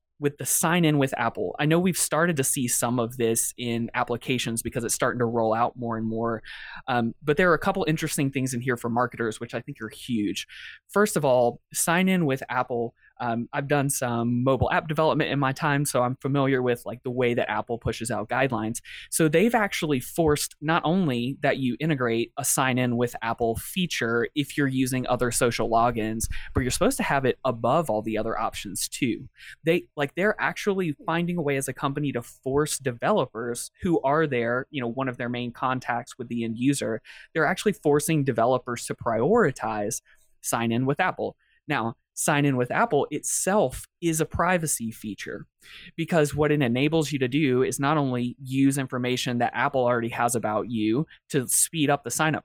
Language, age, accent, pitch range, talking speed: English, 20-39, American, 120-155 Hz, 200 wpm